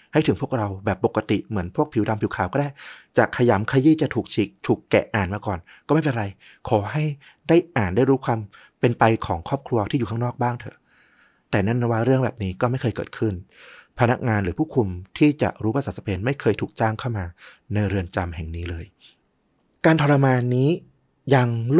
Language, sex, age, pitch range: Thai, male, 30-49, 105-140 Hz